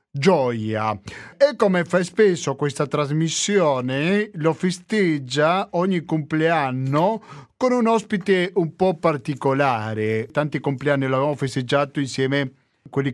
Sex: male